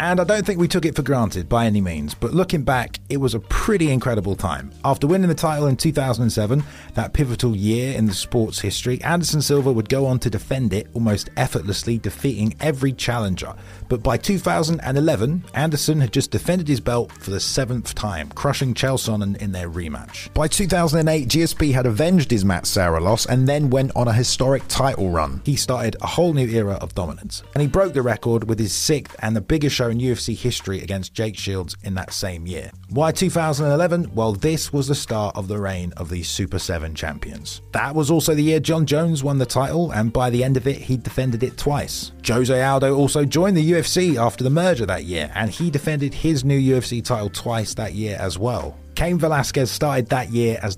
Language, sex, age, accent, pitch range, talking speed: English, male, 30-49, British, 100-145 Hz, 210 wpm